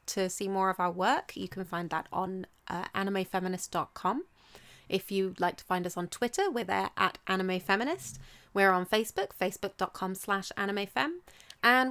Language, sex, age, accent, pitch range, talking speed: English, female, 20-39, British, 185-215 Hz, 160 wpm